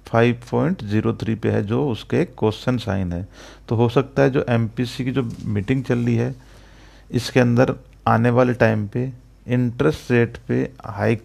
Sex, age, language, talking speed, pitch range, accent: male, 50-69, Hindi, 165 wpm, 105-125 Hz, native